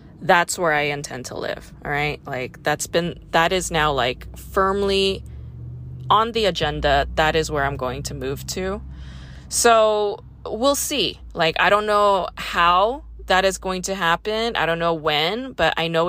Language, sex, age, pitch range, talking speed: English, female, 20-39, 150-190 Hz, 175 wpm